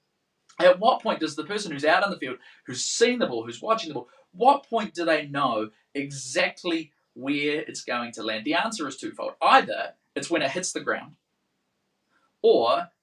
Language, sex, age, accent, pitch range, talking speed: English, male, 20-39, Australian, 135-210 Hz, 195 wpm